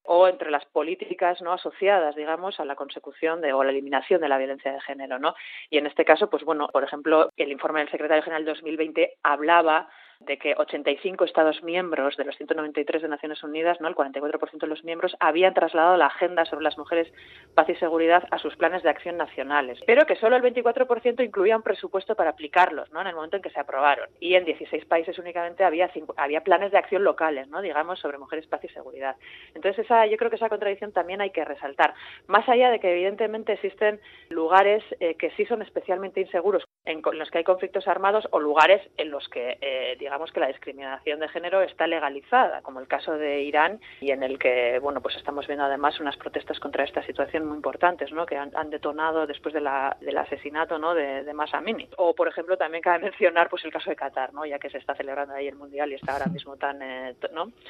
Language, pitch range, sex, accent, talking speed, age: Spanish, 150-190 Hz, female, Spanish, 220 wpm, 30-49